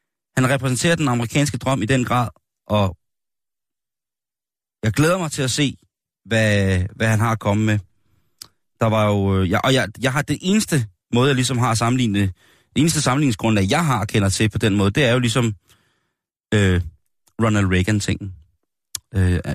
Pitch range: 95-125 Hz